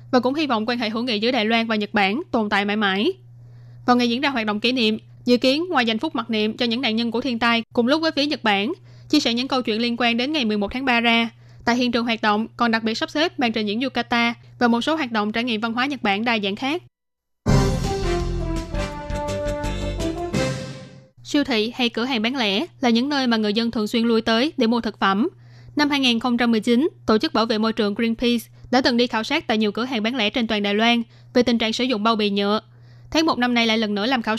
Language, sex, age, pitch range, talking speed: Vietnamese, female, 20-39, 215-250 Hz, 260 wpm